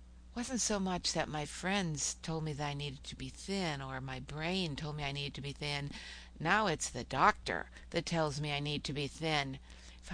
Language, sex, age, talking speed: English, female, 60-79, 220 wpm